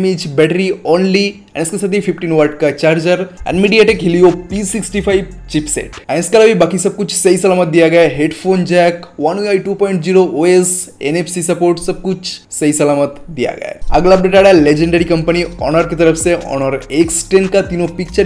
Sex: male